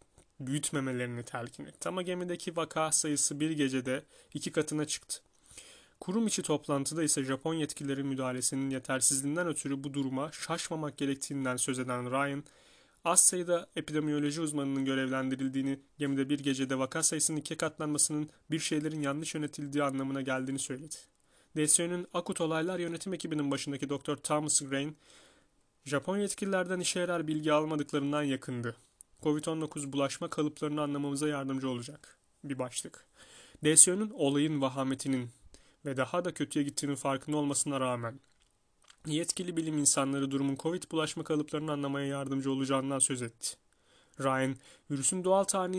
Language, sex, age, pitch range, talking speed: Turkish, male, 30-49, 135-160 Hz, 130 wpm